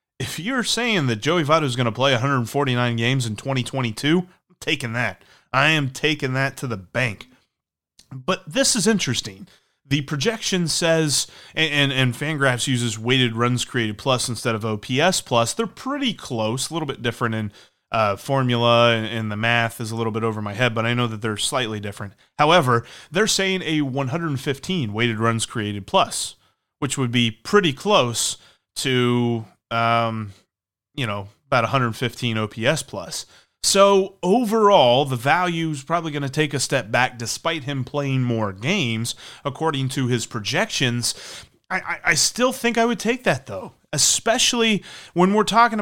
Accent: American